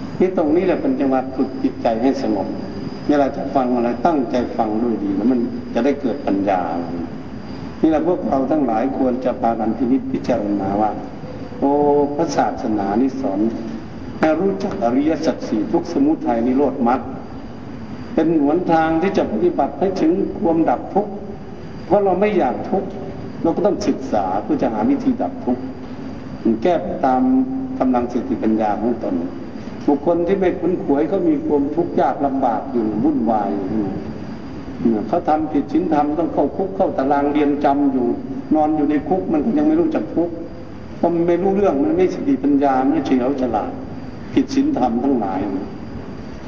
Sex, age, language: male, 60-79, Thai